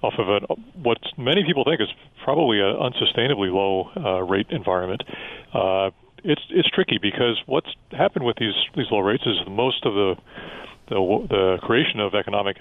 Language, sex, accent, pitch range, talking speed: English, male, American, 95-120 Hz, 170 wpm